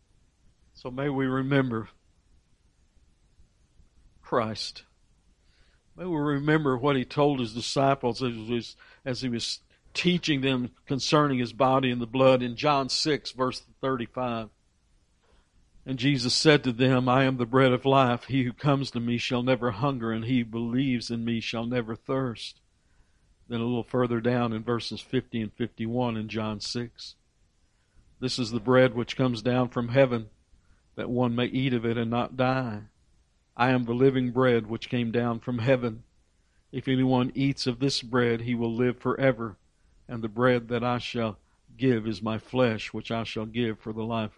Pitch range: 110-130 Hz